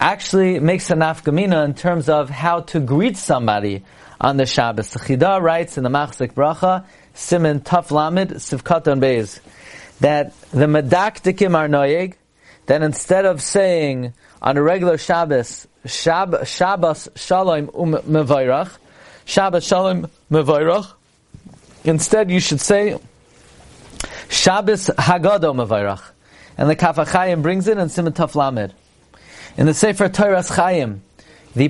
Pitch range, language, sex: 145-185 Hz, English, male